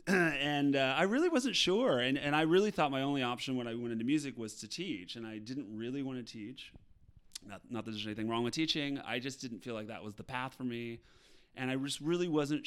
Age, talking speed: 30-49, 250 wpm